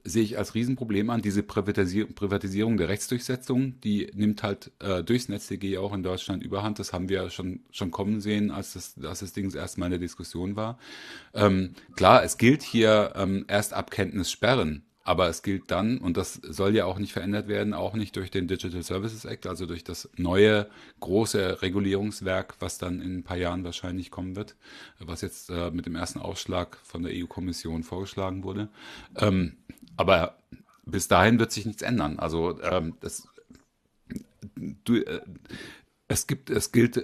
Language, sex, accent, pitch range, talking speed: German, male, German, 90-110 Hz, 175 wpm